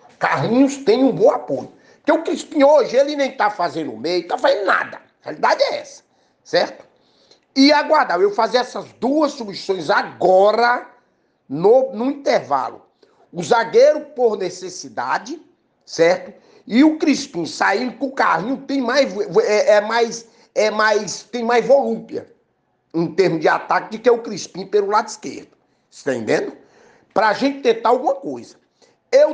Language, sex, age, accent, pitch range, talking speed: Portuguese, male, 50-69, Brazilian, 195-295 Hz, 155 wpm